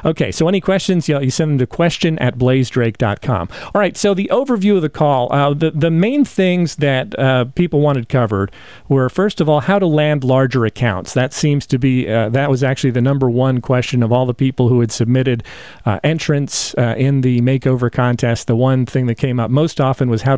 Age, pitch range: 40-59, 125-150 Hz